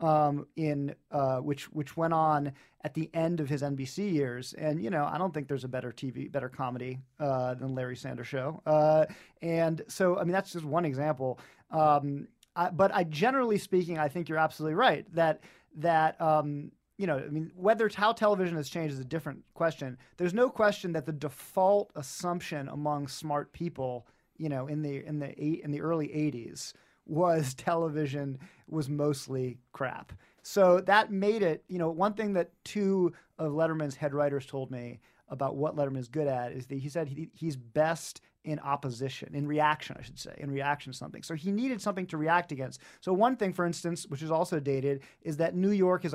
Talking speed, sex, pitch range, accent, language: 200 wpm, male, 140-175 Hz, American, English